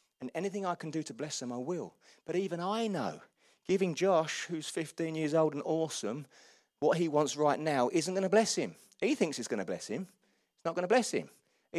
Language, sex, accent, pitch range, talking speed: English, male, British, 155-215 Hz, 235 wpm